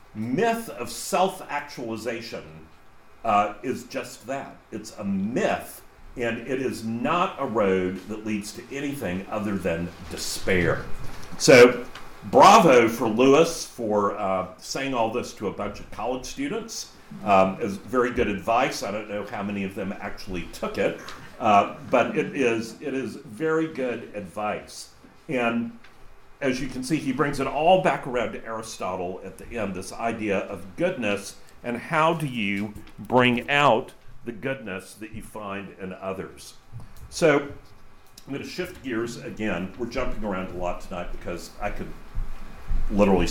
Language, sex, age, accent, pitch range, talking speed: English, male, 50-69, American, 95-130 Hz, 155 wpm